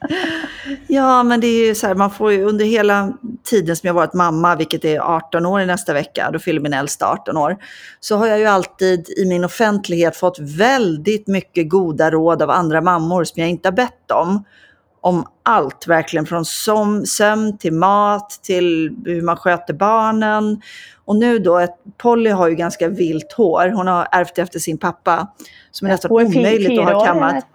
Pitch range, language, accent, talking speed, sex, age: 160-210 Hz, English, Swedish, 185 wpm, female, 40-59